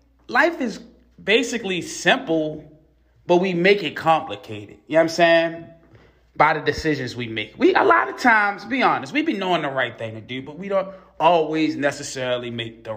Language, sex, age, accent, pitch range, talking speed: English, male, 20-39, American, 115-165 Hz, 190 wpm